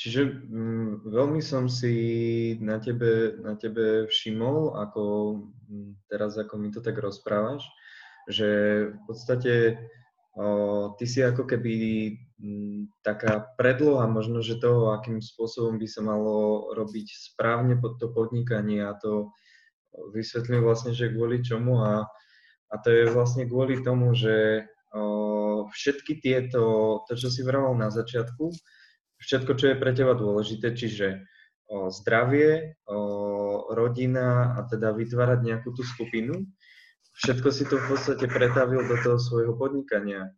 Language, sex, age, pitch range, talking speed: Slovak, male, 20-39, 105-125 Hz, 130 wpm